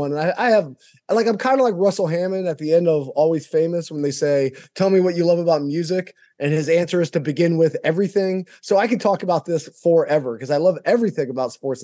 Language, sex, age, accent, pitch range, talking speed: English, male, 20-39, American, 145-185 Hz, 245 wpm